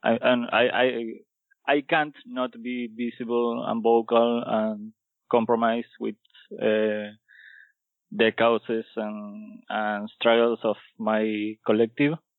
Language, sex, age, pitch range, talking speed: English, male, 20-39, 115-140 Hz, 110 wpm